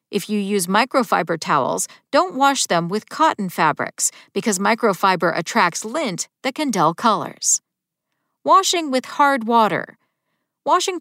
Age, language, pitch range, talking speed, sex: 50-69, English, 195-275 Hz, 130 wpm, female